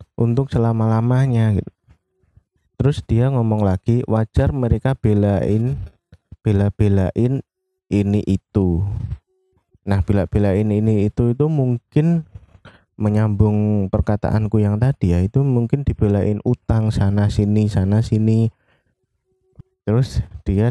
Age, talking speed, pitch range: 20-39, 100 wpm, 100-125 Hz